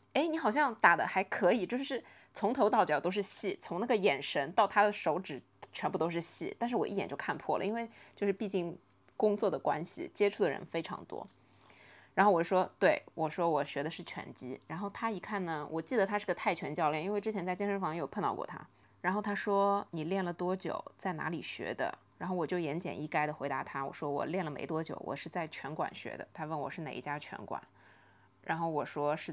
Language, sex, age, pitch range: Chinese, female, 20-39, 160-200 Hz